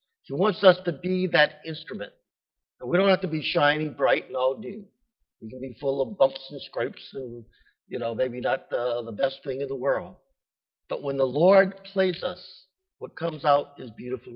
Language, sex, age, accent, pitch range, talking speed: English, male, 60-79, American, 135-185 Hz, 205 wpm